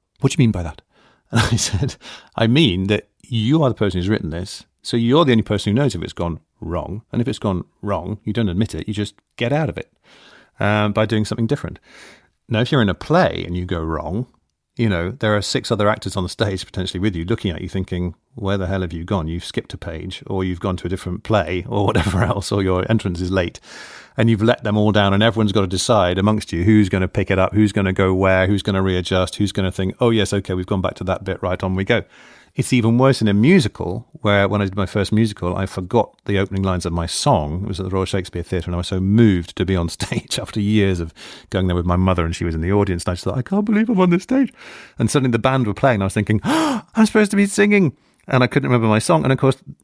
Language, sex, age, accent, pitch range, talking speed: English, male, 40-59, British, 95-120 Hz, 280 wpm